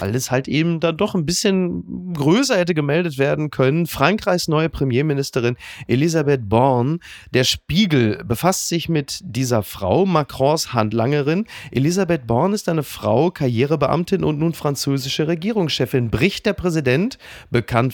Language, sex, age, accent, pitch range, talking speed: German, male, 30-49, German, 120-165 Hz, 135 wpm